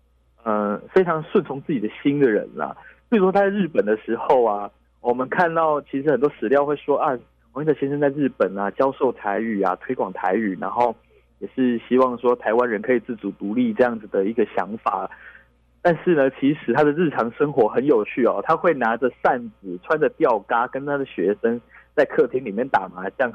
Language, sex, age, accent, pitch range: Chinese, male, 20-39, native, 100-145 Hz